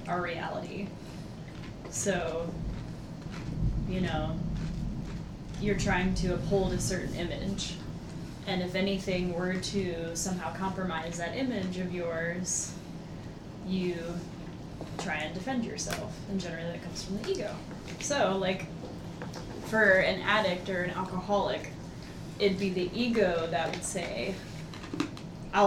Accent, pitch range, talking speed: American, 165-195 Hz, 120 wpm